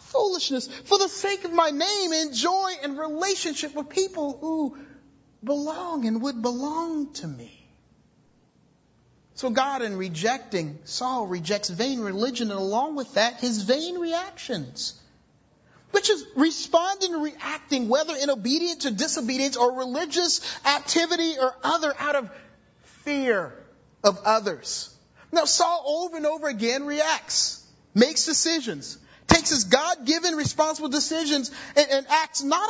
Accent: American